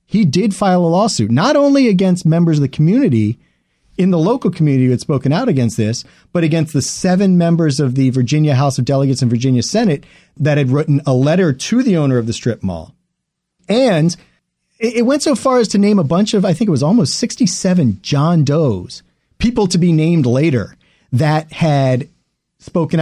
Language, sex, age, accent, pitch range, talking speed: English, male, 40-59, American, 135-190 Hz, 195 wpm